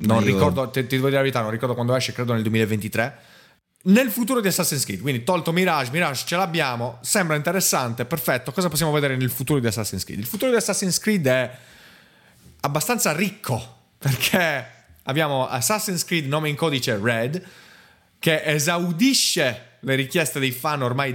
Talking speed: 165 wpm